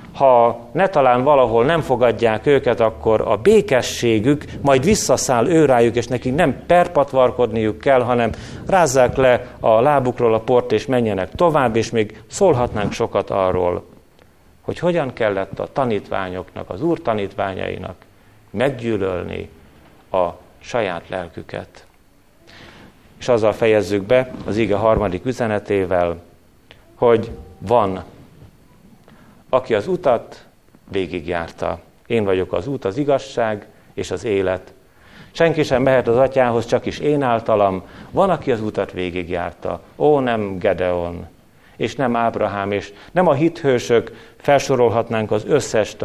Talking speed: 125 wpm